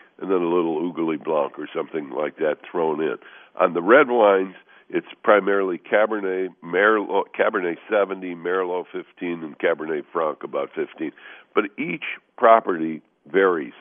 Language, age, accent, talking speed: English, 60-79, American, 145 wpm